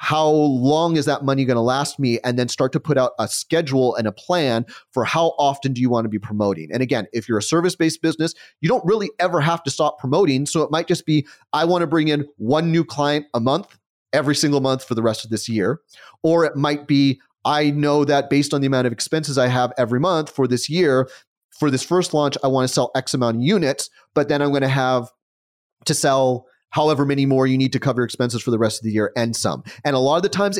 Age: 30-49